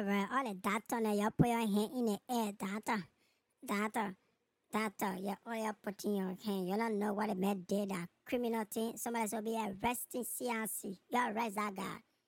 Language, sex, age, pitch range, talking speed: English, male, 60-79, 210-285 Hz, 190 wpm